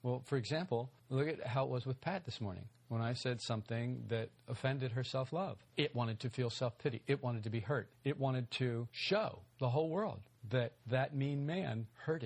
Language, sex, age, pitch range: English, male, 50-69, 110-130 Hz